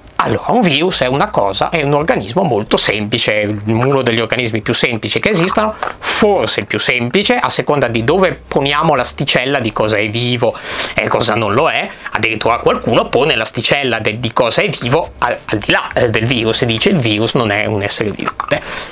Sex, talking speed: male, 190 wpm